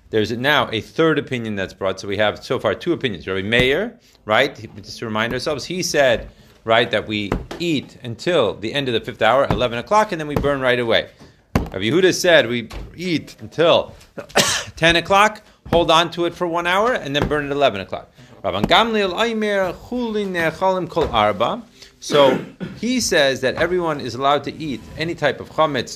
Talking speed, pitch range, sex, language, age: 180 wpm, 110-160 Hz, male, Hebrew, 30-49